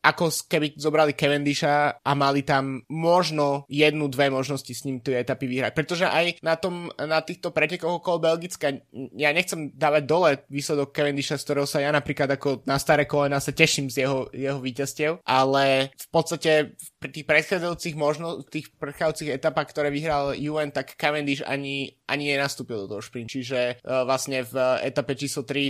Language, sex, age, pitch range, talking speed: Slovak, male, 20-39, 130-150 Hz, 165 wpm